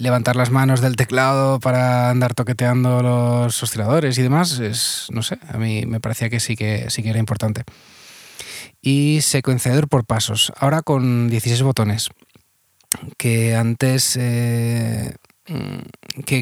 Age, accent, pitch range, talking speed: 20-39, Spanish, 115-135 Hz, 140 wpm